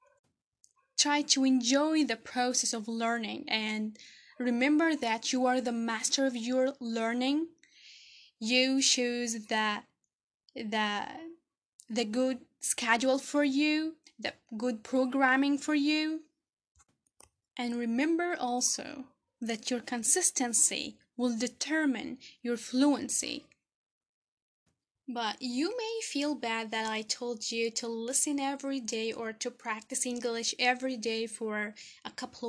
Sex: female